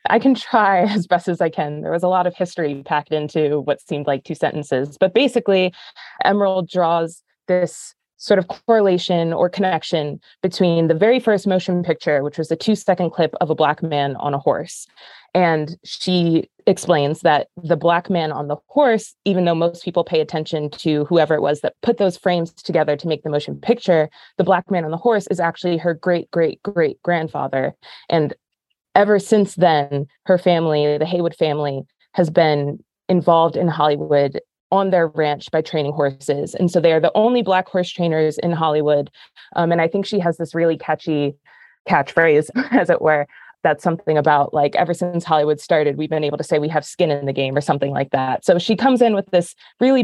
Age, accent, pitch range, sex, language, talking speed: 20-39, American, 155-185 Hz, female, English, 195 wpm